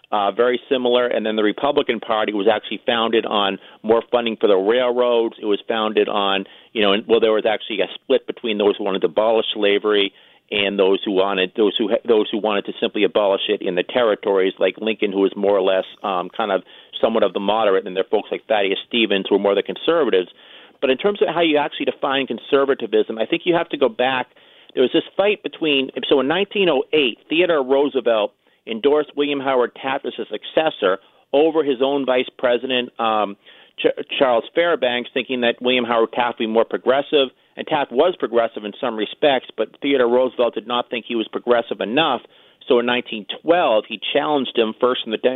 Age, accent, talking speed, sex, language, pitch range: 40-59, American, 205 wpm, male, English, 110-130 Hz